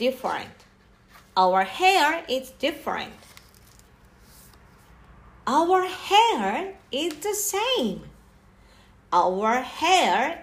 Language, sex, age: Japanese, female, 50-69